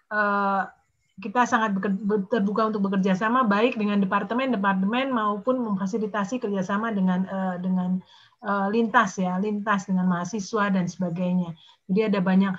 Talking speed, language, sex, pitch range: 135 wpm, Indonesian, female, 195-230 Hz